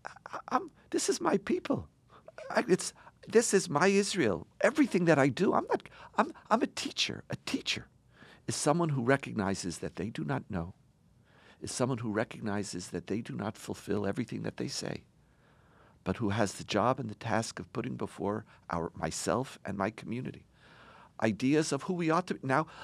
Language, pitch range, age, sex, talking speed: English, 120-190 Hz, 50-69, male, 180 wpm